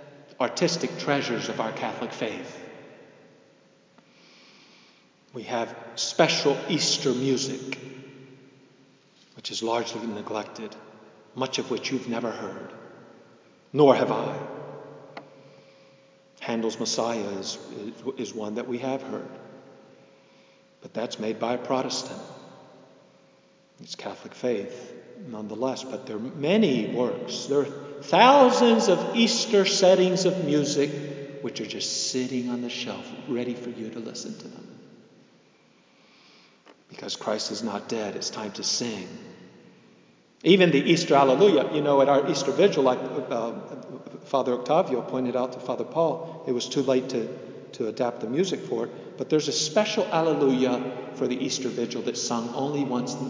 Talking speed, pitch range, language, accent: 140 wpm, 120-145 Hz, English, American